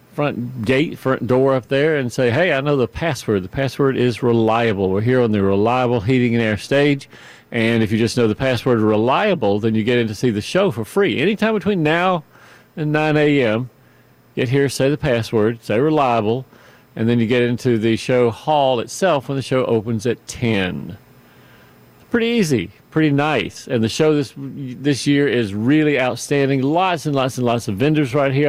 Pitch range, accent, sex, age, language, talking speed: 115-145 Hz, American, male, 50-69, English, 200 wpm